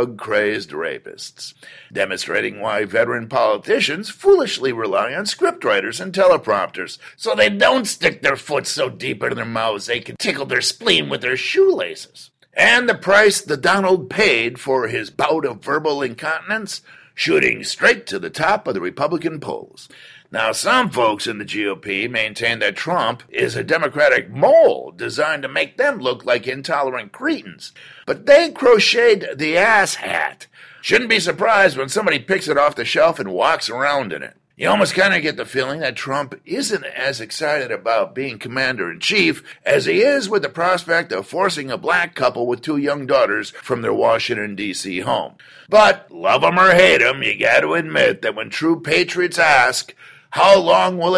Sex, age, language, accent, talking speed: male, 50-69, English, American, 175 wpm